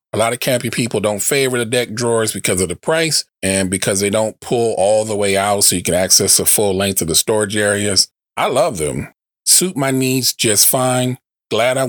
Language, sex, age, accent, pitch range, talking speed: English, male, 30-49, American, 95-120 Hz, 220 wpm